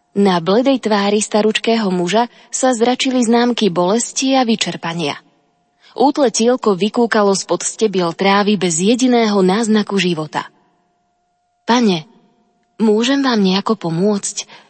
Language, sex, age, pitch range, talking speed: Slovak, female, 20-39, 195-240 Hz, 100 wpm